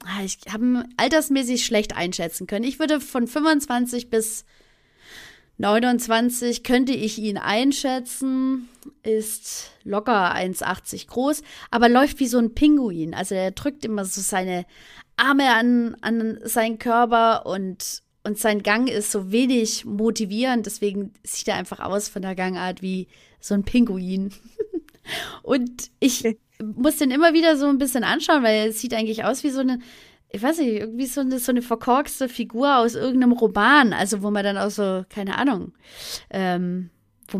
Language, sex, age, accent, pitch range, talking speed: German, female, 30-49, German, 205-255 Hz, 160 wpm